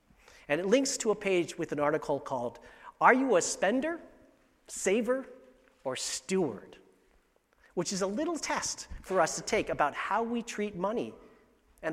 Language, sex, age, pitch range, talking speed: English, male, 40-59, 160-230 Hz, 160 wpm